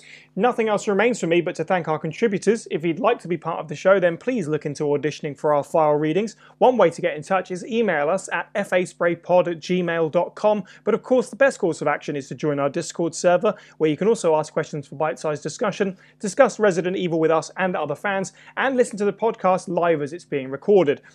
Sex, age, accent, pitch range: male, 30-49, British, 160-215 Hz